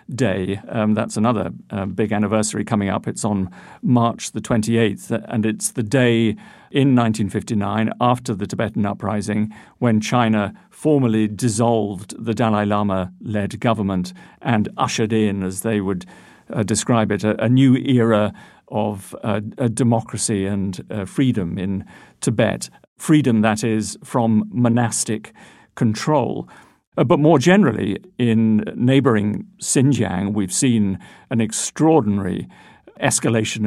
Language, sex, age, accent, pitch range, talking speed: English, male, 50-69, British, 105-120 Hz, 130 wpm